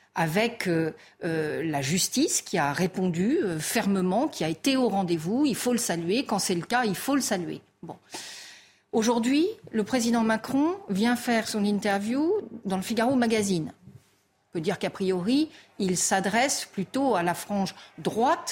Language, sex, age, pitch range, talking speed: French, female, 50-69, 190-270 Hz, 170 wpm